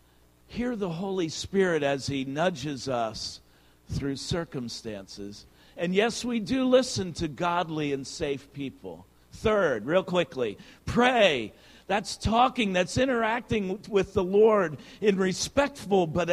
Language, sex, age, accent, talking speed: English, male, 50-69, American, 125 wpm